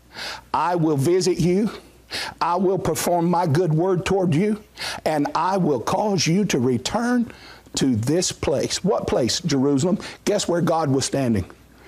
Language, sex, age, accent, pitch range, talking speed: English, male, 50-69, American, 140-205 Hz, 150 wpm